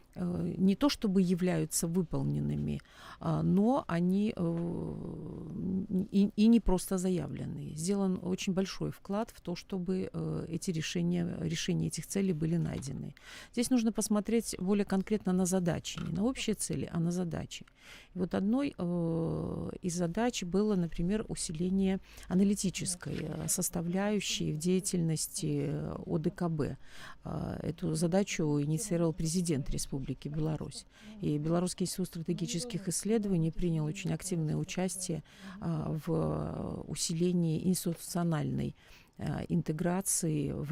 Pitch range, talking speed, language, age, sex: 160-190 Hz, 105 wpm, Russian, 50-69, female